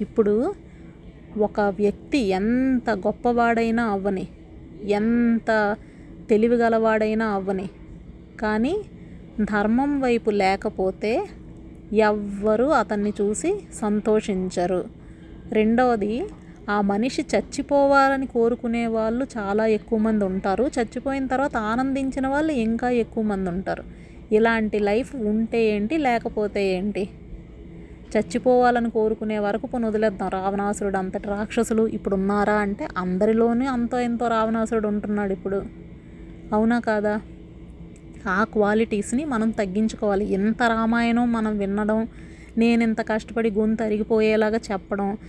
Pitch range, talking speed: 205-235 Hz, 95 wpm